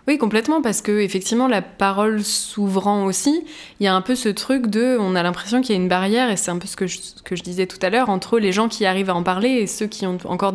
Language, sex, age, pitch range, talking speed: French, female, 20-39, 180-235 Hz, 290 wpm